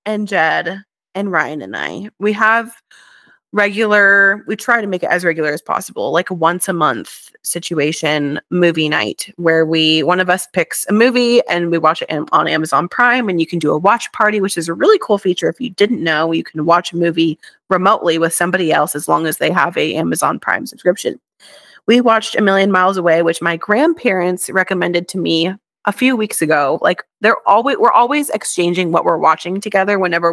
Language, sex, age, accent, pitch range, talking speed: English, female, 20-39, American, 170-215 Hz, 205 wpm